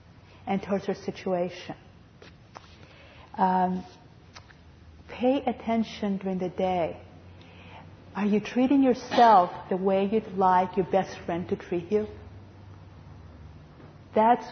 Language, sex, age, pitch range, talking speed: English, female, 50-69, 160-210 Hz, 105 wpm